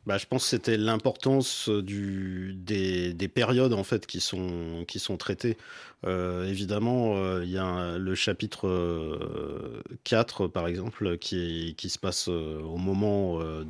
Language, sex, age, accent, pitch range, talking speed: French, male, 30-49, French, 95-125 Hz, 170 wpm